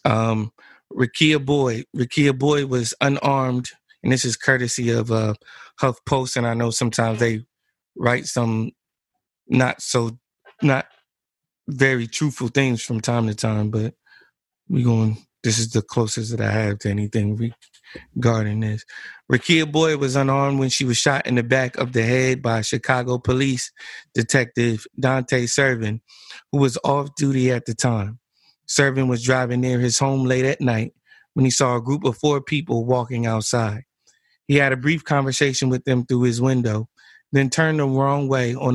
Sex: male